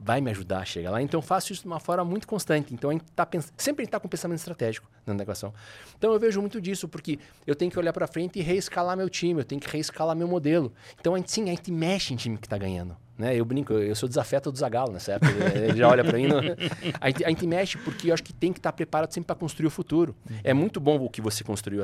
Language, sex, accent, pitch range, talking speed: Portuguese, male, Brazilian, 110-160 Hz, 280 wpm